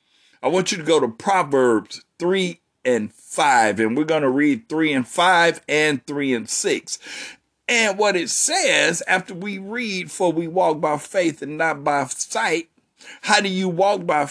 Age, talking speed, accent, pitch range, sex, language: 50-69, 180 wpm, American, 145-205 Hz, male, English